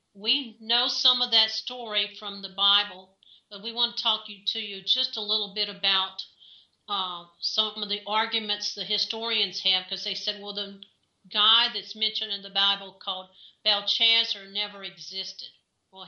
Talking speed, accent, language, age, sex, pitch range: 170 wpm, American, English, 50-69, female, 195-220 Hz